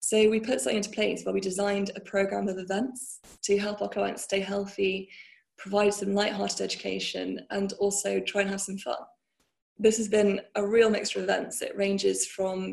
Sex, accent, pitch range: female, British, 195-215 Hz